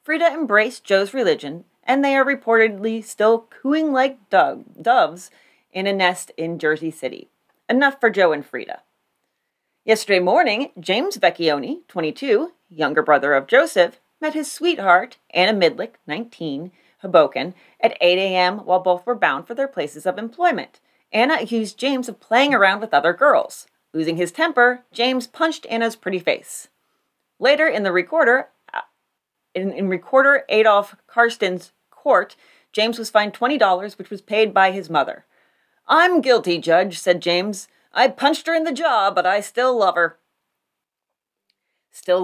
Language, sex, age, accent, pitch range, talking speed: English, female, 30-49, American, 185-275 Hz, 150 wpm